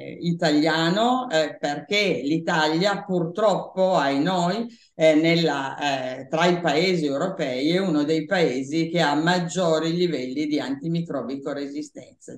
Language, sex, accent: Italian, female, native